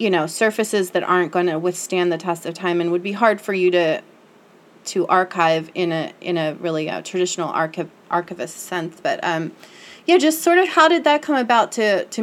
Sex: female